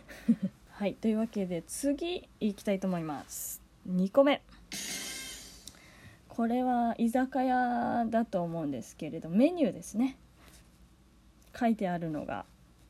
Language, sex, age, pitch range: Japanese, female, 20-39, 175-255 Hz